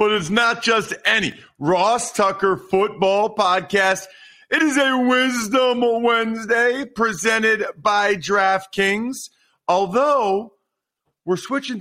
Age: 40-59